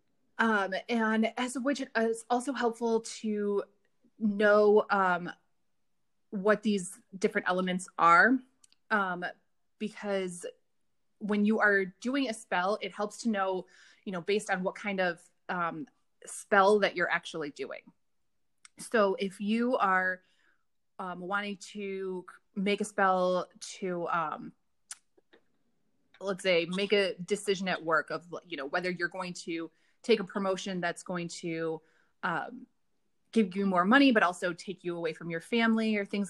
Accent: American